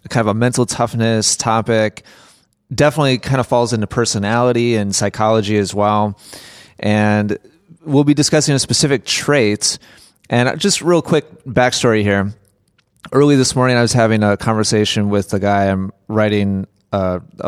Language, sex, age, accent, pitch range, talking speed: English, male, 30-49, American, 105-130 Hz, 150 wpm